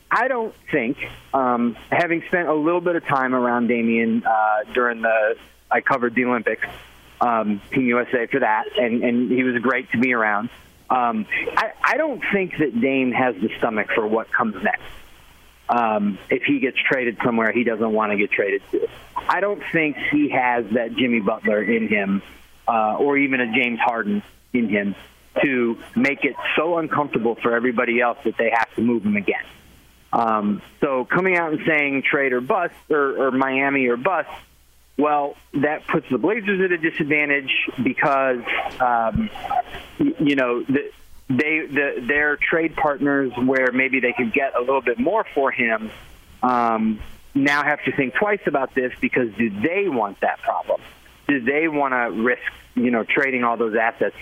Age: 40-59